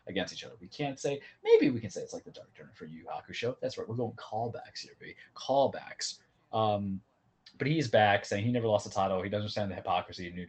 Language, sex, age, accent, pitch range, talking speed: English, male, 30-49, American, 90-105 Hz, 250 wpm